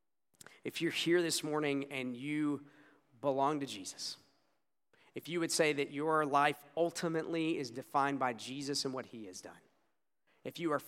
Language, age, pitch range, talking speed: English, 40-59, 130-155 Hz, 165 wpm